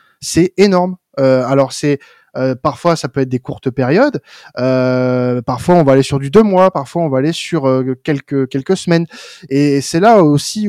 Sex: male